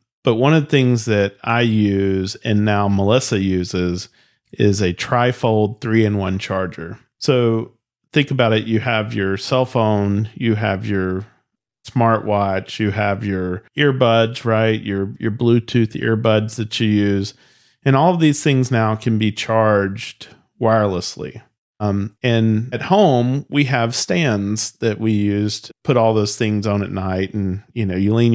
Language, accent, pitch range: English, American, 100-120 Hz